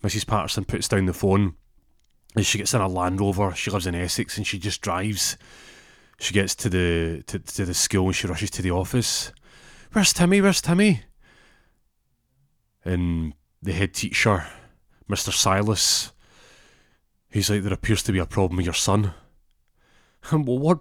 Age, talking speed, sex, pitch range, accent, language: 30-49, 165 wpm, male, 95-130 Hz, British, English